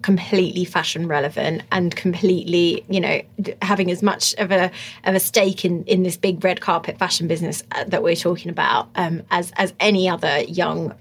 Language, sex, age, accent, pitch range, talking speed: English, female, 20-39, British, 180-220 Hz, 180 wpm